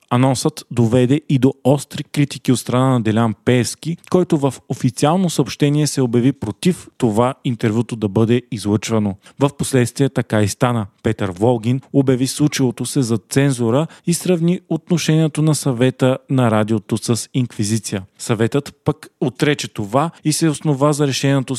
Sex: male